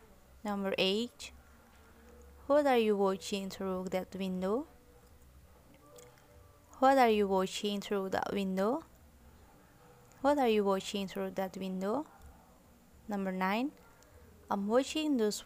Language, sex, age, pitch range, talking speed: Indonesian, female, 20-39, 190-225 Hz, 110 wpm